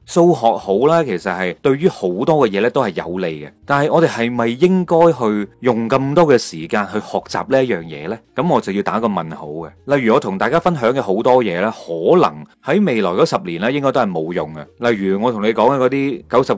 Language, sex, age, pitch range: Chinese, male, 30-49, 100-150 Hz